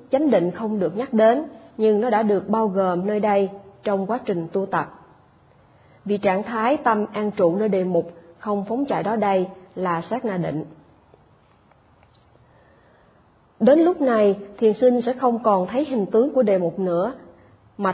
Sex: female